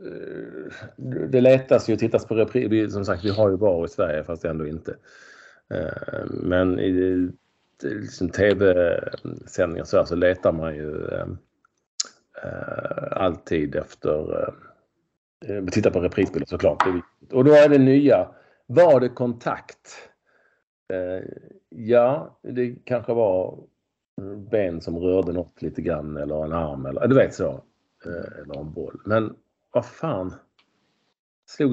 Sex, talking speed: male, 130 wpm